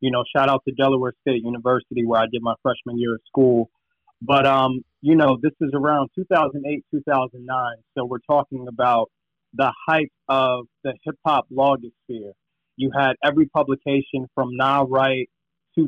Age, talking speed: 30-49, 165 wpm